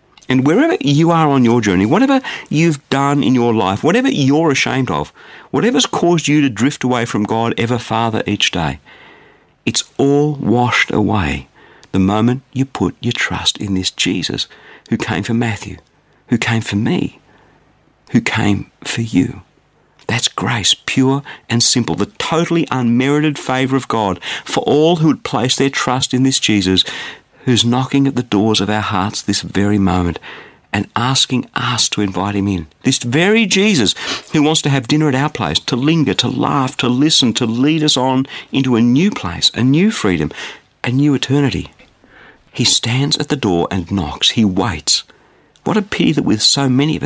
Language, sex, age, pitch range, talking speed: English, male, 50-69, 105-140 Hz, 180 wpm